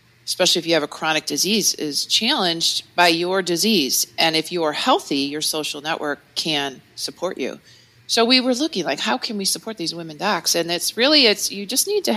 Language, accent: English, American